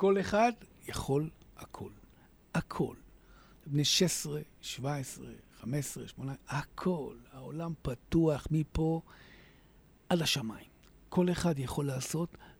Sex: male